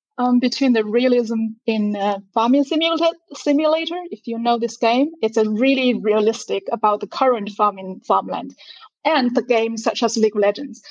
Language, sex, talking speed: English, female, 170 wpm